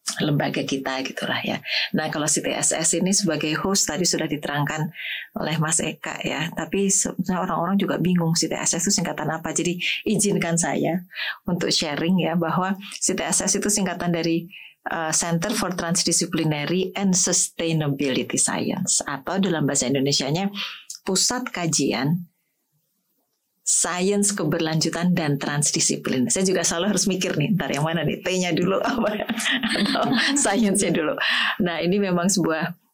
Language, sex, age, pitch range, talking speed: Indonesian, female, 30-49, 155-190 Hz, 130 wpm